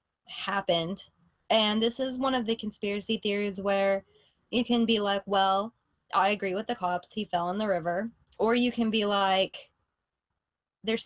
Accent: American